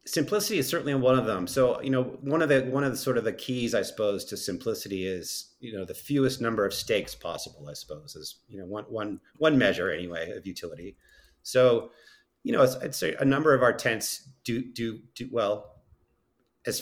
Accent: American